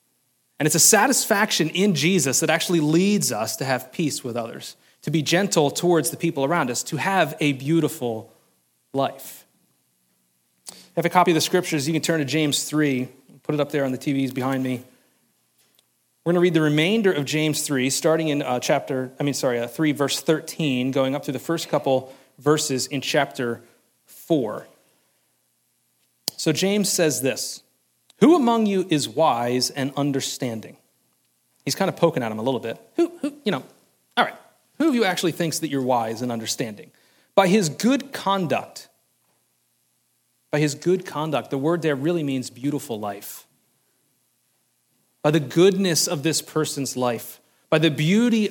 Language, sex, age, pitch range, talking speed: English, male, 30-49, 125-170 Hz, 175 wpm